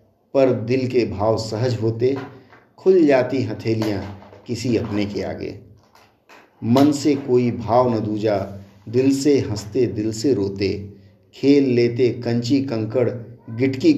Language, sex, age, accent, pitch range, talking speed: Hindi, male, 50-69, native, 105-130 Hz, 130 wpm